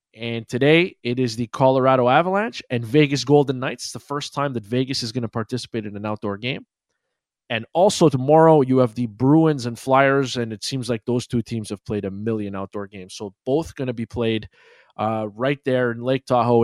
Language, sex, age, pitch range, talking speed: English, male, 20-39, 115-155 Hz, 210 wpm